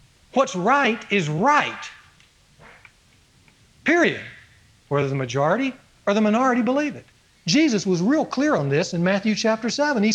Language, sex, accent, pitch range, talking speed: English, male, American, 150-235 Hz, 140 wpm